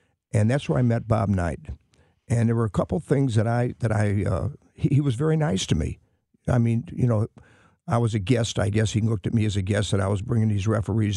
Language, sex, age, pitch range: English, male, 50-69, 105-125 Hz